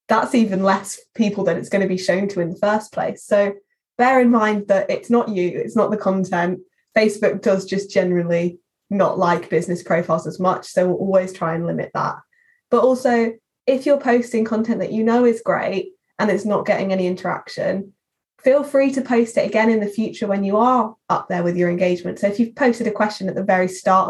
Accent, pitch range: British, 185-235 Hz